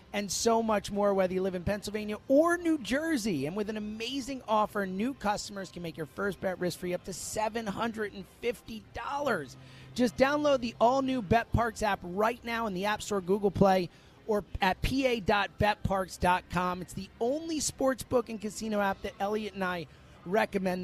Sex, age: male, 30-49